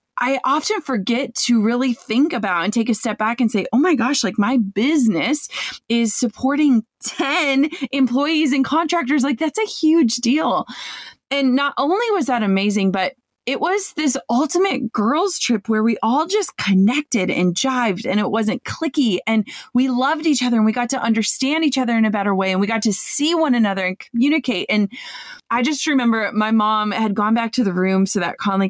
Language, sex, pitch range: English, female, 195-265 Hz